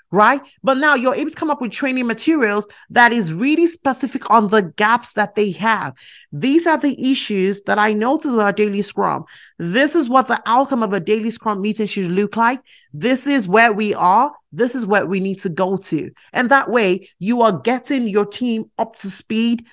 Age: 30-49